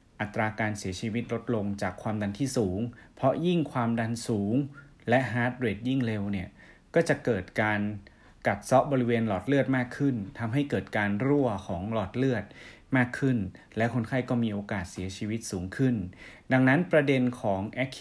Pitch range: 105-130 Hz